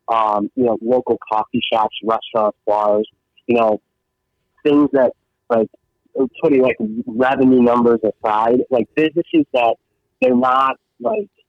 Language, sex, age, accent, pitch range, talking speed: English, male, 30-49, American, 110-125 Hz, 125 wpm